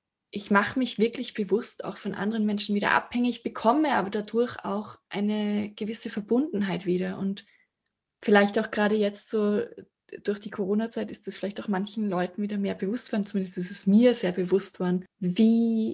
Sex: female